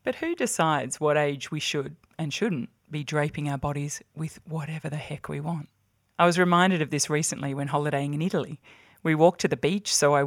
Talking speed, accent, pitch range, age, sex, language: 210 wpm, Australian, 140-160 Hz, 20-39, female, English